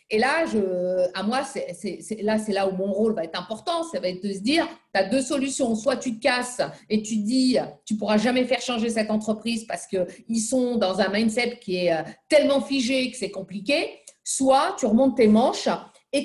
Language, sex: French, female